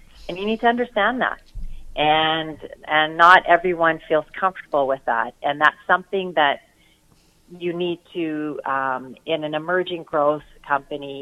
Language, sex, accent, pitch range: English, female, American, 140-165 Hz